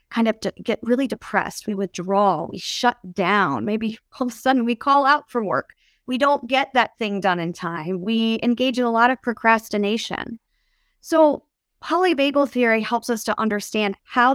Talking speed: 180 wpm